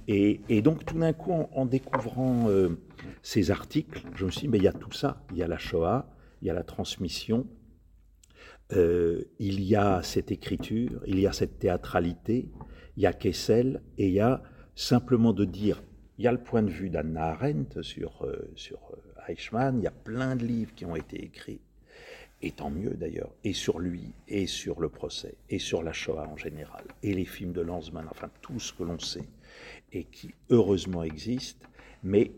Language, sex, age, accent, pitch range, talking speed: French, male, 50-69, French, 90-125 Hz, 205 wpm